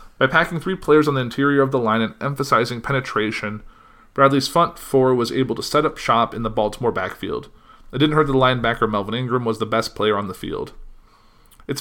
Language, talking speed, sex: English, 210 wpm, male